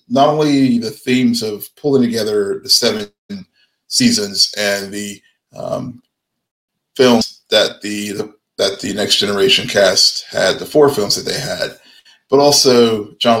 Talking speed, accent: 145 wpm, American